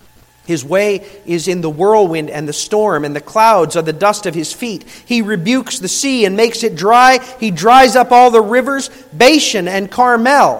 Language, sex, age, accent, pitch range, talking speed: English, male, 40-59, American, 195-270 Hz, 200 wpm